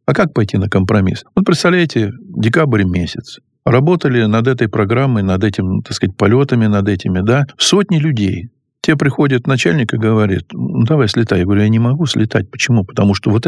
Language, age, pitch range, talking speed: Russian, 50-69, 110-145 Hz, 185 wpm